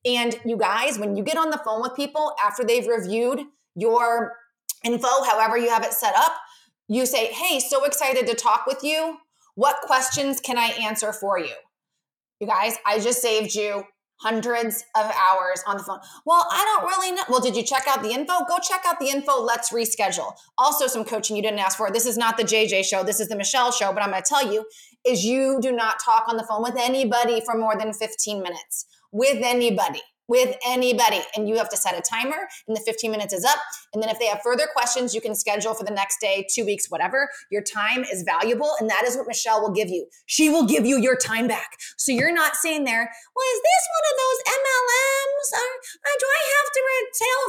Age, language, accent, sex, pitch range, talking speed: 20-39, English, American, female, 220-285 Hz, 225 wpm